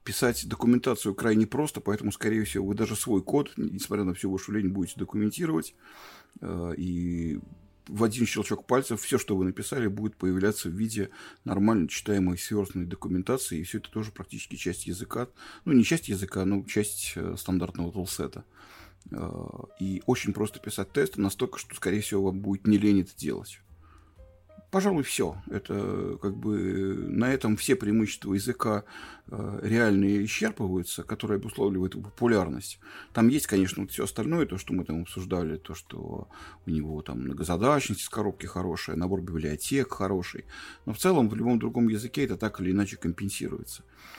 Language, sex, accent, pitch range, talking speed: Russian, male, native, 90-110 Hz, 160 wpm